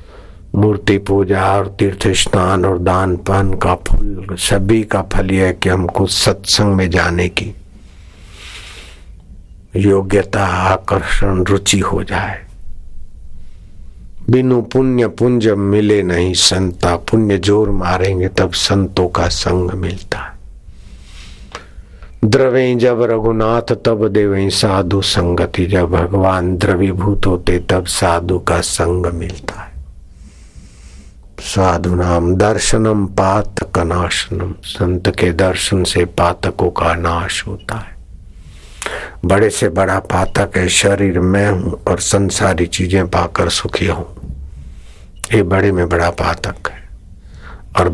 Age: 60-79